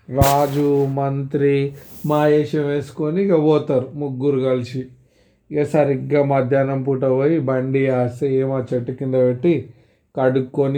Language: Telugu